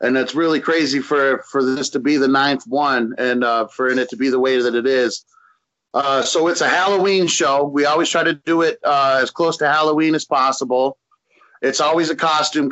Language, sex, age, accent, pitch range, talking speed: English, male, 30-49, American, 130-160 Hz, 215 wpm